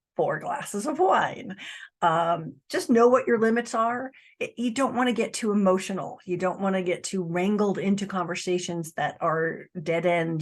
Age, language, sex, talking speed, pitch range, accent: 40-59, English, female, 185 wpm, 165-195 Hz, American